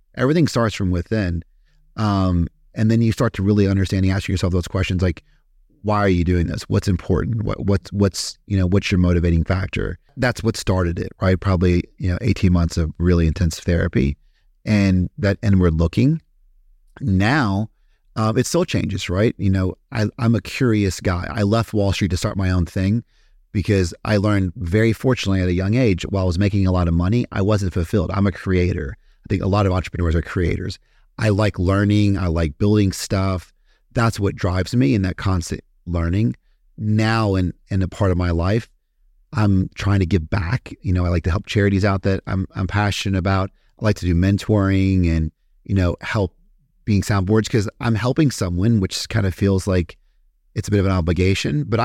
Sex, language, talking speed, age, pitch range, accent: male, English, 205 wpm, 30-49, 90-110 Hz, American